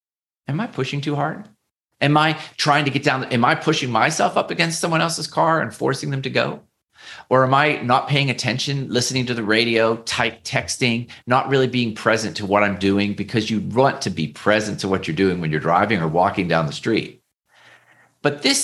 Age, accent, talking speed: 40-59, American, 215 wpm